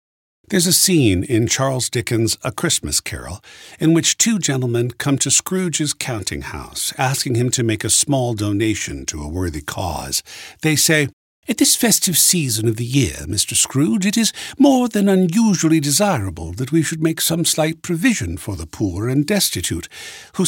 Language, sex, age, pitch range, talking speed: English, male, 60-79, 105-165 Hz, 170 wpm